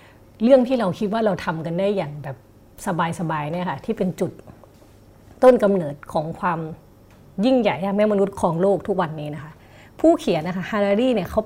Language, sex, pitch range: Thai, female, 160-215 Hz